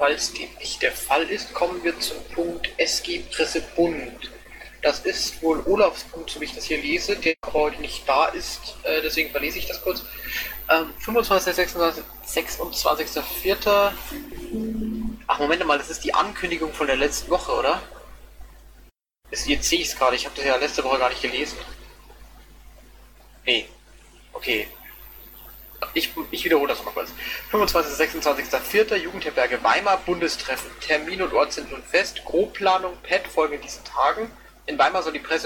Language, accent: German, German